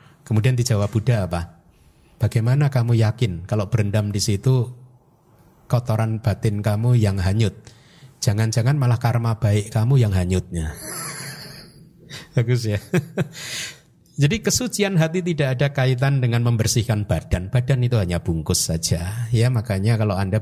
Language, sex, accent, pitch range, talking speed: Indonesian, male, native, 100-135 Hz, 125 wpm